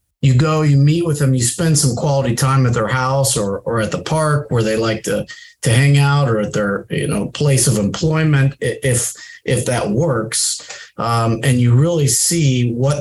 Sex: male